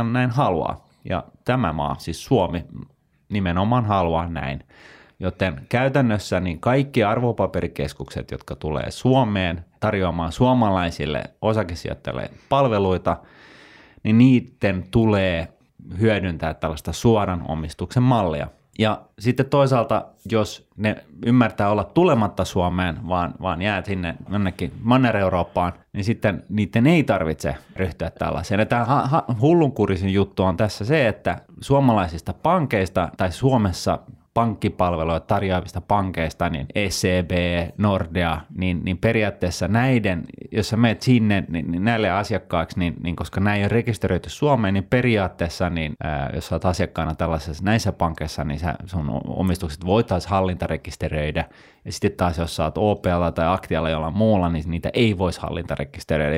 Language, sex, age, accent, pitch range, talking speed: Finnish, male, 30-49, native, 85-110 Hz, 130 wpm